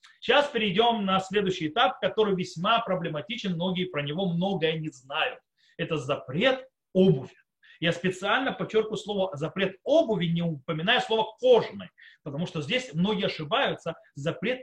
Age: 30-49